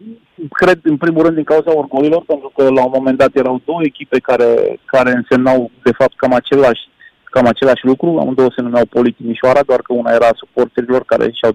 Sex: male